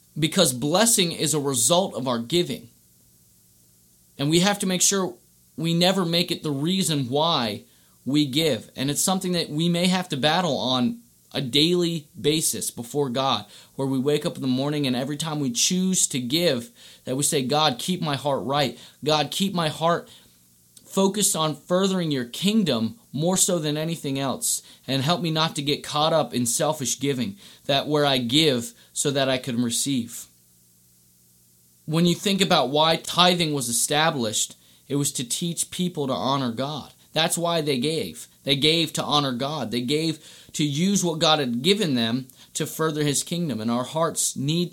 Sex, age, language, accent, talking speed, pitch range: male, 30-49, English, American, 180 wpm, 120-165 Hz